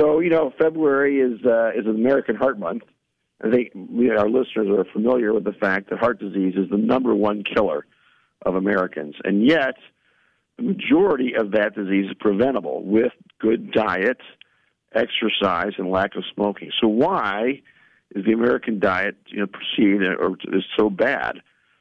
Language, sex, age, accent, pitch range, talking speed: English, male, 50-69, American, 100-130 Hz, 165 wpm